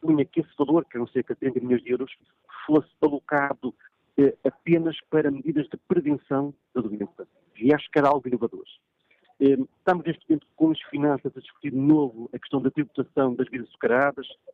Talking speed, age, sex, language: 180 wpm, 50-69, male, Portuguese